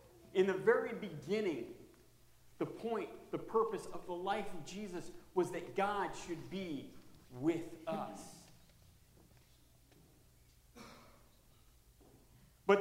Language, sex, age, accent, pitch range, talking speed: English, male, 40-59, American, 145-210 Hz, 100 wpm